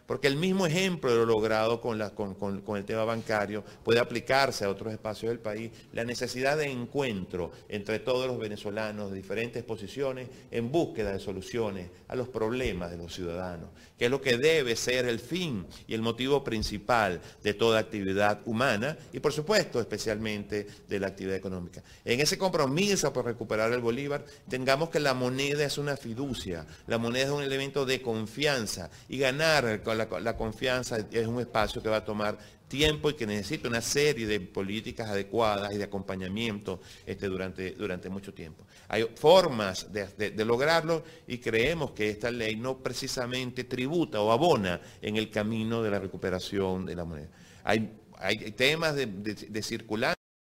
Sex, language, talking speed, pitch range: male, Spanish, 175 wpm, 105-130 Hz